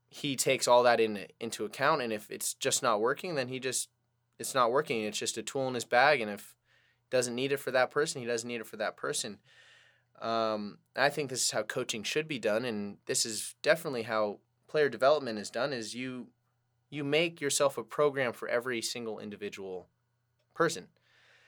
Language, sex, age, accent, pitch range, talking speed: English, male, 20-39, American, 110-130 Hz, 205 wpm